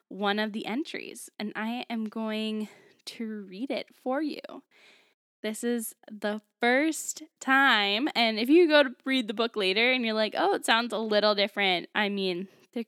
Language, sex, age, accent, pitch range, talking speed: English, female, 10-29, American, 200-240 Hz, 180 wpm